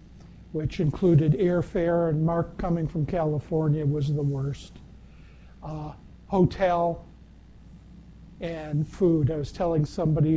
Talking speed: 110 wpm